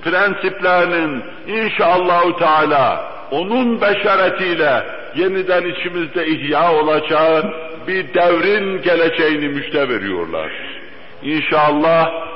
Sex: male